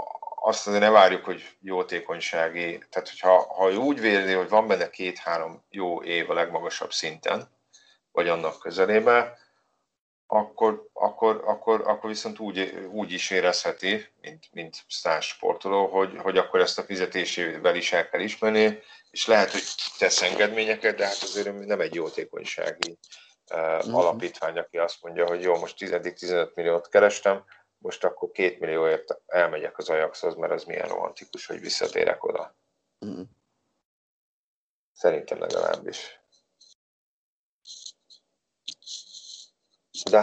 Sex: male